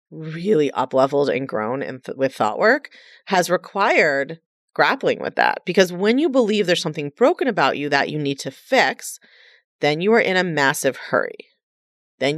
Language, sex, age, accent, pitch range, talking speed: English, female, 30-49, American, 150-235 Hz, 175 wpm